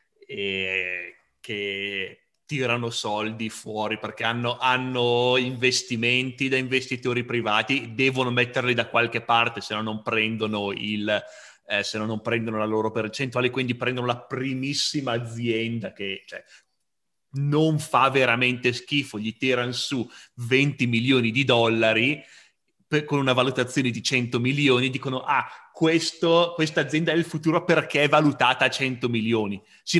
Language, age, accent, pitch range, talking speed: Italian, 30-49, native, 120-160 Hz, 140 wpm